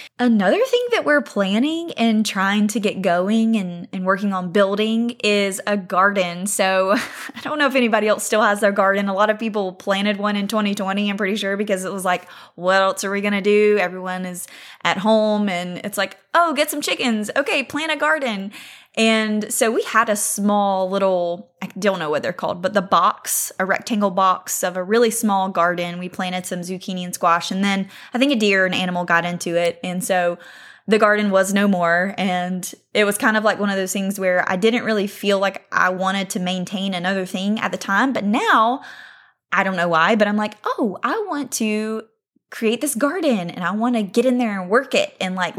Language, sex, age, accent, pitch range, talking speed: English, female, 20-39, American, 190-230 Hz, 220 wpm